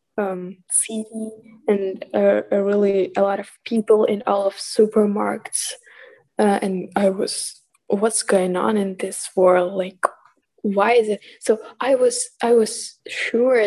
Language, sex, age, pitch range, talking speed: English, female, 10-29, 190-220 Hz, 140 wpm